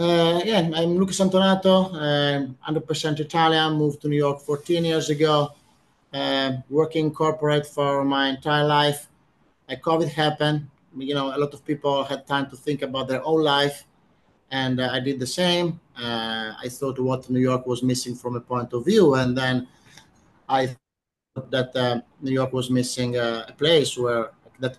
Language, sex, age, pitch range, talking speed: English, male, 30-49, 125-145 Hz, 175 wpm